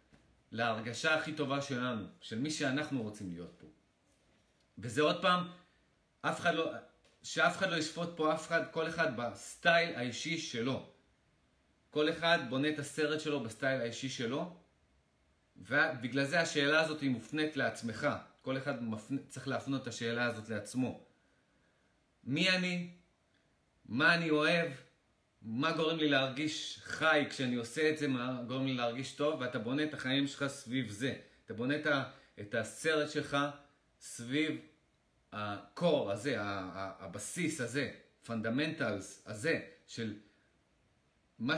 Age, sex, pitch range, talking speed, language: 30-49, male, 115-155 Hz, 130 wpm, Hebrew